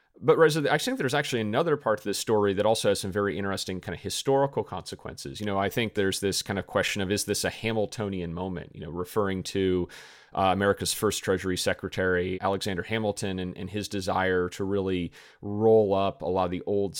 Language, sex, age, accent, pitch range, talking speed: English, male, 30-49, American, 95-115 Hz, 210 wpm